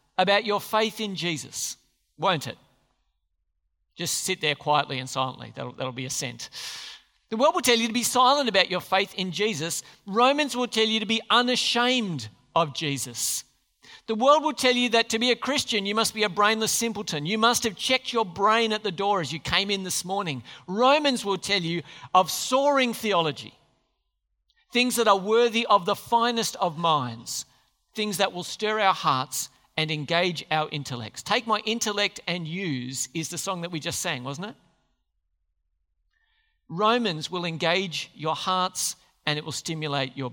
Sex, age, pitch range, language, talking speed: male, 50-69, 140-220 Hz, English, 180 wpm